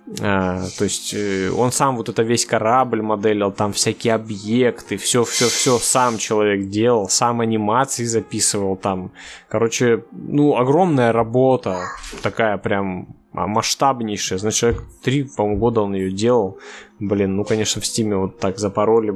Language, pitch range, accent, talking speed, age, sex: Russian, 105-130 Hz, native, 140 wpm, 20-39, male